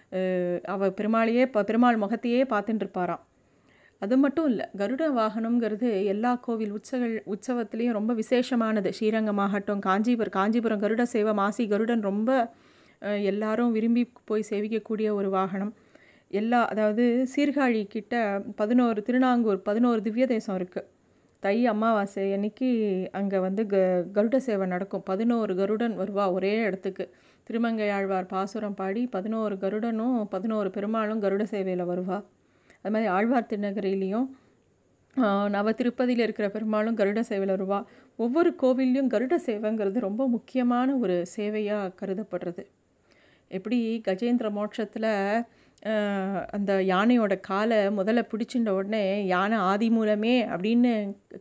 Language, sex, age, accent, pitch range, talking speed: Tamil, female, 30-49, native, 200-235 Hz, 115 wpm